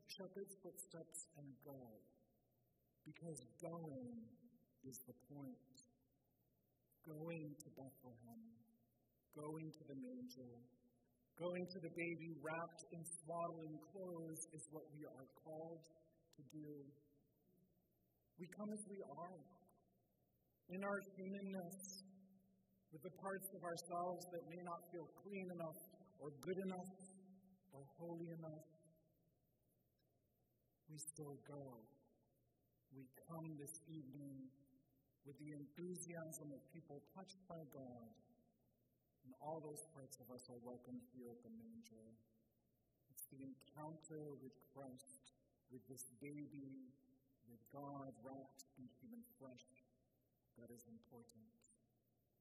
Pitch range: 130-165 Hz